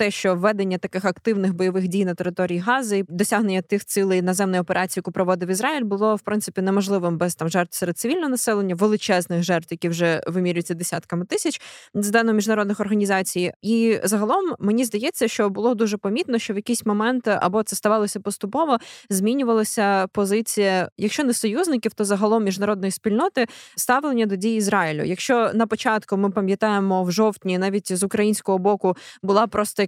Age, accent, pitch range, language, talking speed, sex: 20-39, native, 185-220 Hz, Ukrainian, 165 wpm, female